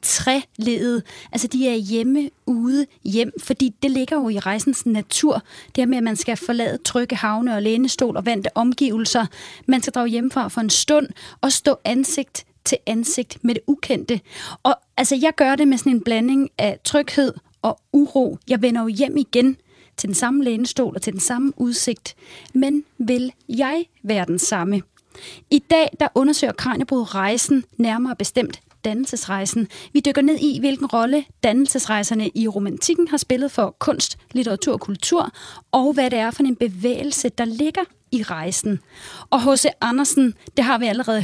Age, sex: 30-49, female